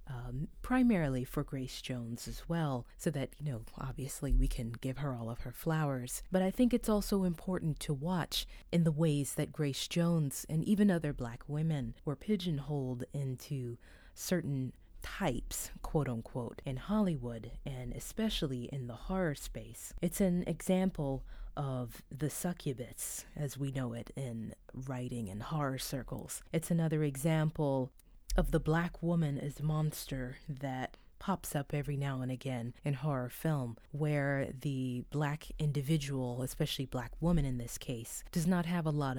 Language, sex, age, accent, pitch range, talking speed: English, female, 30-49, American, 130-160 Hz, 160 wpm